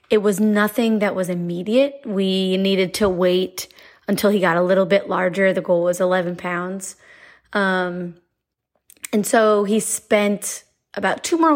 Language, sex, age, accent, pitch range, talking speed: English, female, 20-39, American, 185-215 Hz, 155 wpm